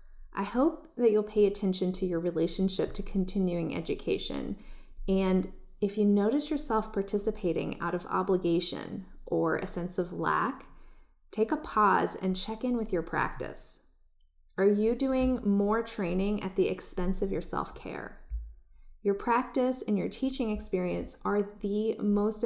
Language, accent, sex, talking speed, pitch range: English, American, female, 145 wpm, 180-215 Hz